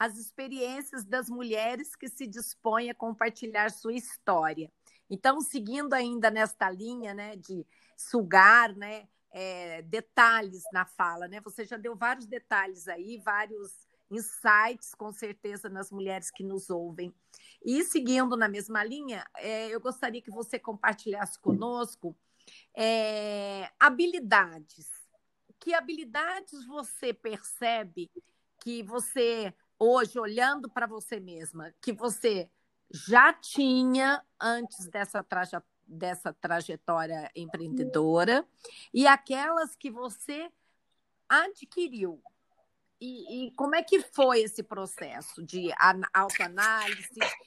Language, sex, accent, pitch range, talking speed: Portuguese, female, Brazilian, 195-250 Hz, 110 wpm